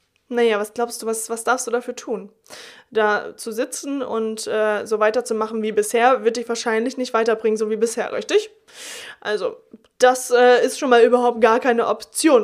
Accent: German